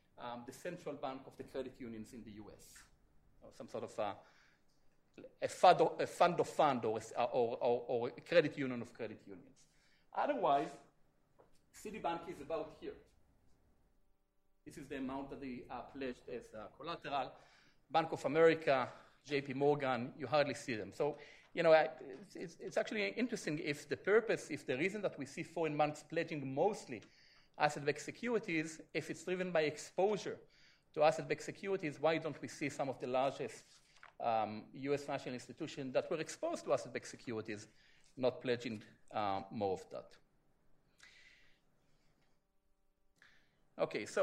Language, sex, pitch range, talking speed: English, male, 125-160 Hz, 150 wpm